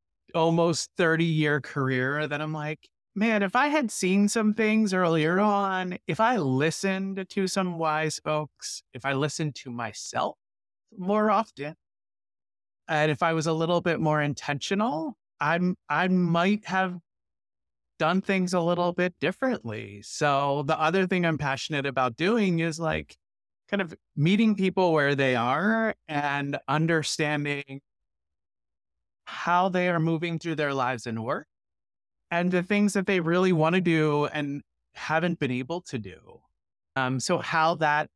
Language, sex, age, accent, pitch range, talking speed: English, male, 30-49, American, 130-175 Hz, 150 wpm